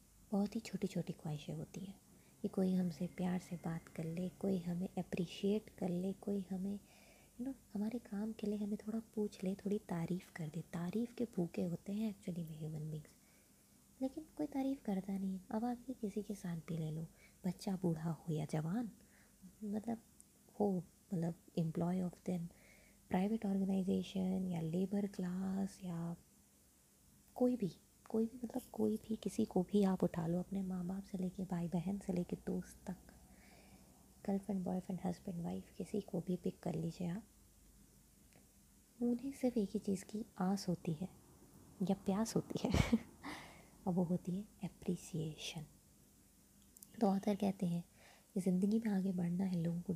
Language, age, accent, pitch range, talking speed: Hindi, 20-39, native, 180-210 Hz, 170 wpm